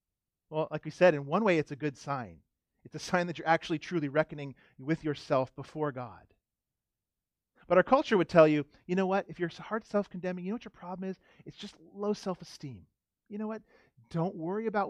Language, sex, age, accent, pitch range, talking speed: English, male, 40-59, American, 135-190 Hz, 210 wpm